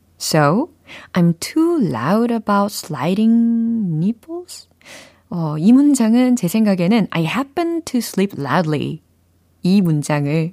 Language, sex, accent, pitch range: Korean, female, native, 150-215 Hz